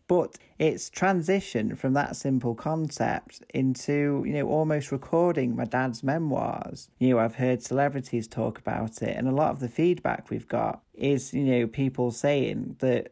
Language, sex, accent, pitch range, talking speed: English, male, British, 125-165 Hz, 170 wpm